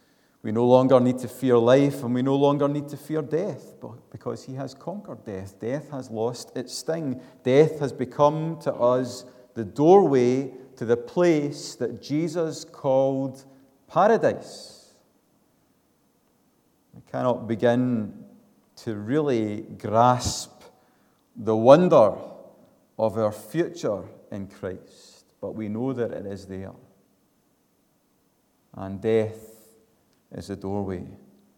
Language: English